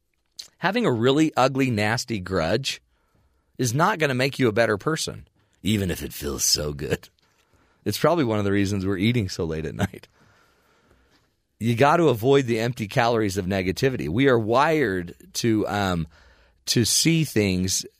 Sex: male